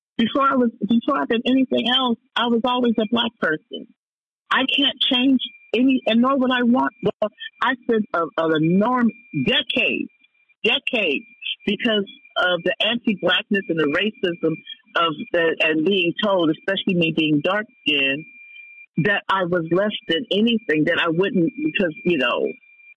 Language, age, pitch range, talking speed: English, 50-69, 180-275 Hz, 160 wpm